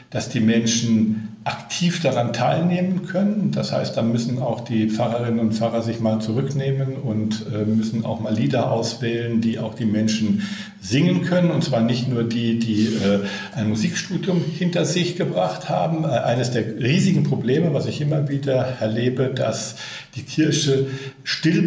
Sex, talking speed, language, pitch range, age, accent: male, 165 wpm, German, 125-165 Hz, 60-79, German